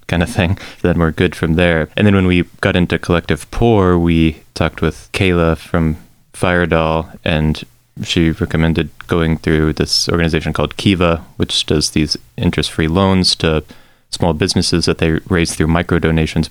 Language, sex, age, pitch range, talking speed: English, male, 20-39, 80-100 Hz, 160 wpm